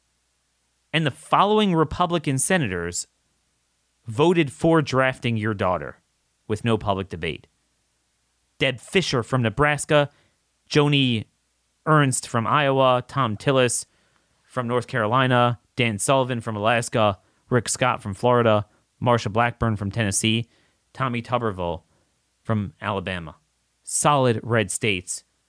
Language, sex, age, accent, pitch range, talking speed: English, male, 30-49, American, 110-155 Hz, 110 wpm